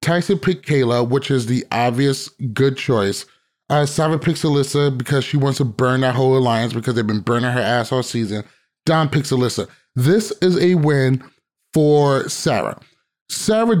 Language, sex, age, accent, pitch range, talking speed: English, male, 30-49, American, 130-165 Hz, 165 wpm